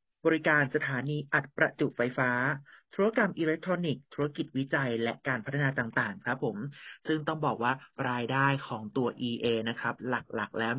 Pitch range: 120-145 Hz